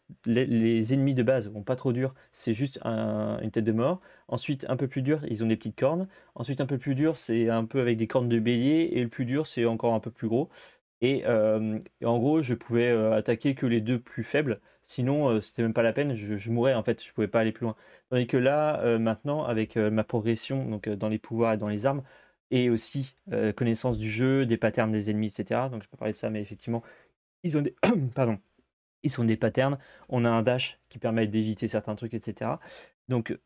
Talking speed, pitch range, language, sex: 240 wpm, 110-130 Hz, French, male